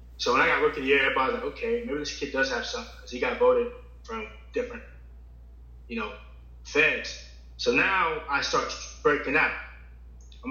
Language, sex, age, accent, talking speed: English, male, 20-39, American, 200 wpm